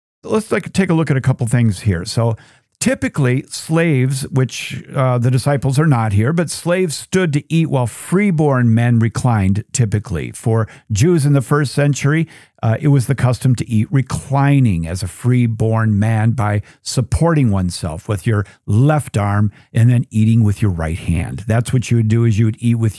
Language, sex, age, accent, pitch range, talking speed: English, male, 50-69, American, 115-145 Hz, 185 wpm